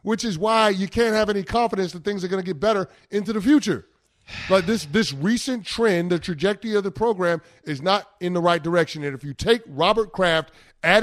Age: 30-49